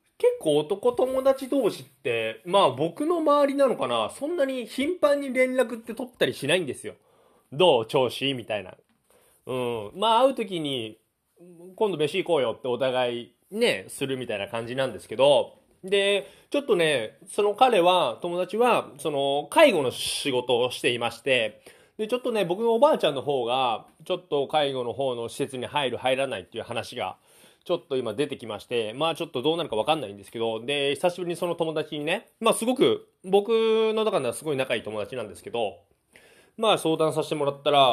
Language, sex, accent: Japanese, male, native